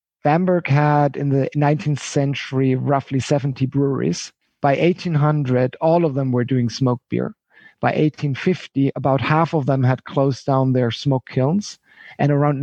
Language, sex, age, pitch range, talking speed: English, male, 50-69, 130-150 Hz, 150 wpm